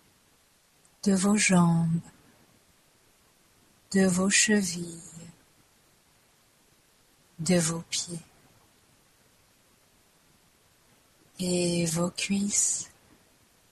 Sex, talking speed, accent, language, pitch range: female, 55 wpm, French, French, 170-195 Hz